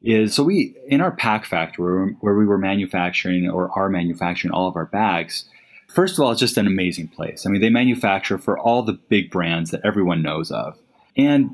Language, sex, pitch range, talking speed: English, male, 90-120 Hz, 210 wpm